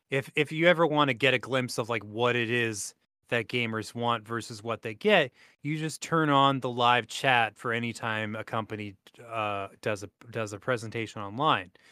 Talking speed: 200 wpm